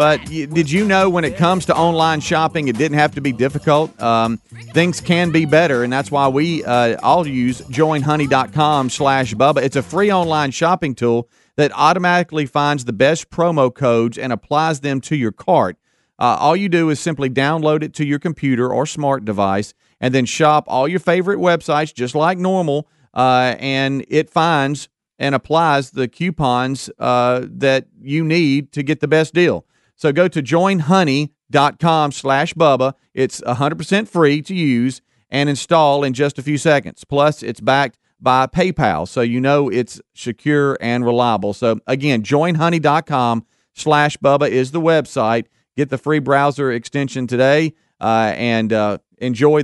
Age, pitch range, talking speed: 40-59, 125-155 Hz, 165 wpm